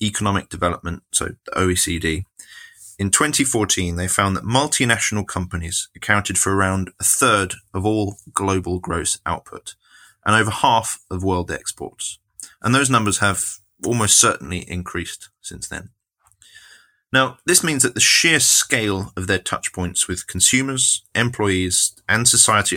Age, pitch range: 30-49, 90-115 Hz